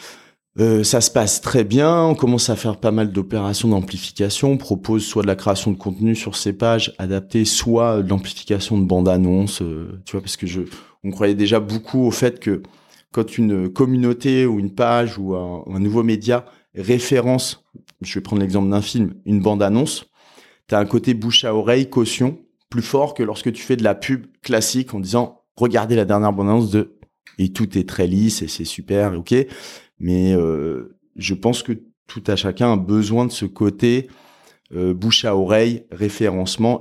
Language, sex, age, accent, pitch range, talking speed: French, male, 30-49, French, 100-120 Hz, 190 wpm